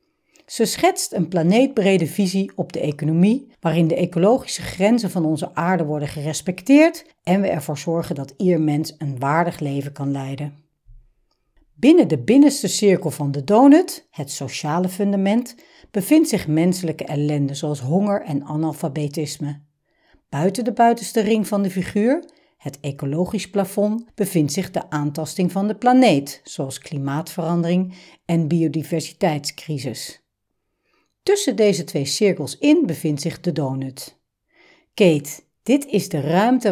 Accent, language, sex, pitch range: Dutch, Dutch, female, 150-220 Hz